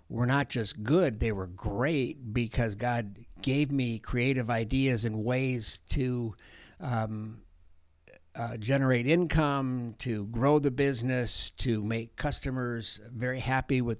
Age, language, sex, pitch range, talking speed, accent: 60-79, English, male, 110-135 Hz, 130 wpm, American